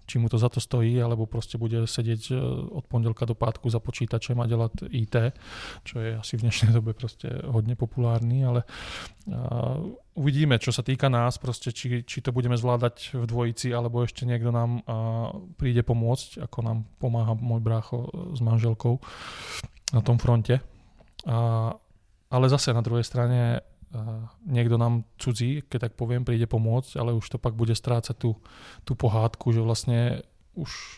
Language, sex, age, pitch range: Czech, male, 20-39, 115-125 Hz